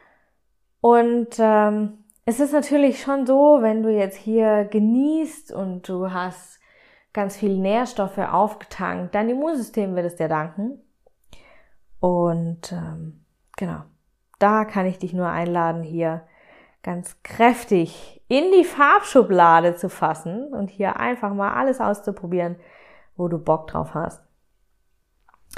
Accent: German